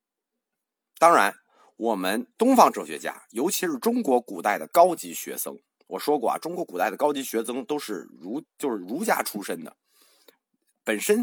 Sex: male